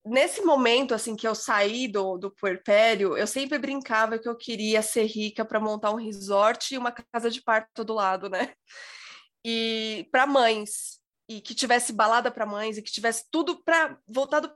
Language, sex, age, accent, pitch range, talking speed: Portuguese, female, 20-39, Brazilian, 200-265 Hz, 180 wpm